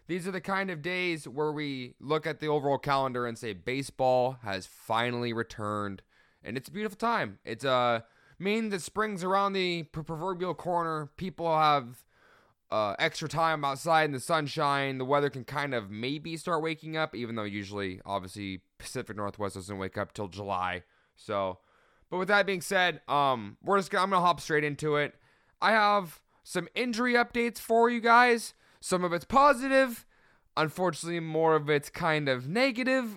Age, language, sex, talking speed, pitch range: 20-39, English, male, 175 wpm, 125-185 Hz